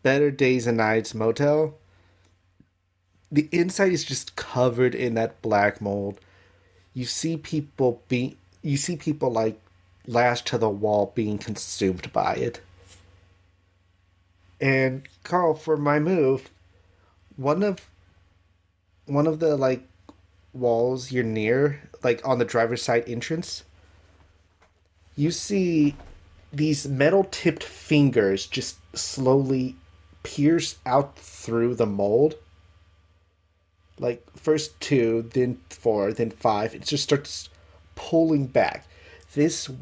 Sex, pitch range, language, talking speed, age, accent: male, 90-135 Hz, English, 115 wpm, 30-49, American